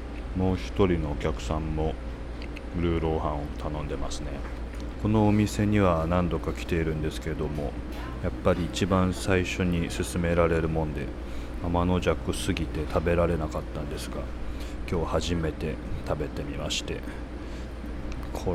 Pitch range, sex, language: 65-85 Hz, male, Japanese